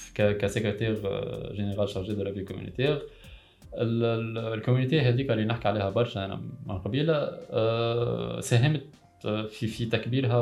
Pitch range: 100-115 Hz